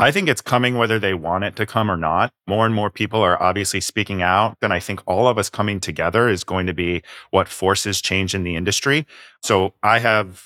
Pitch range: 90-105 Hz